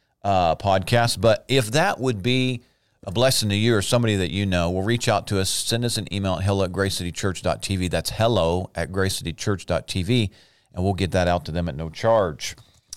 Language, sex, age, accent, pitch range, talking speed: English, male, 40-59, American, 90-115 Hz, 200 wpm